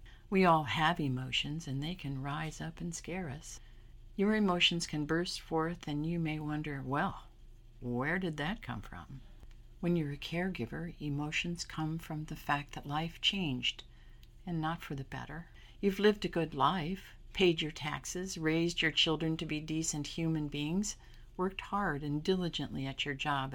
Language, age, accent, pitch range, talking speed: English, 50-69, American, 130-175 Hz, 170 wpm